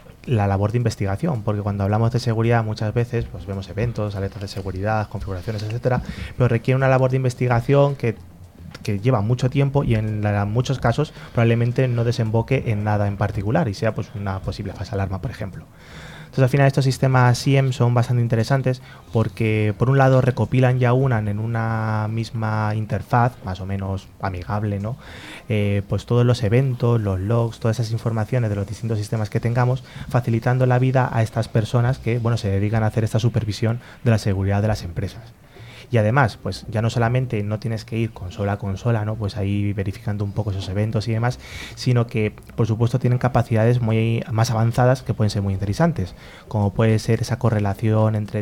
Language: Spanish